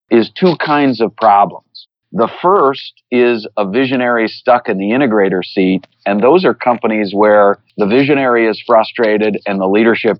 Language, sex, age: English, male, 50-69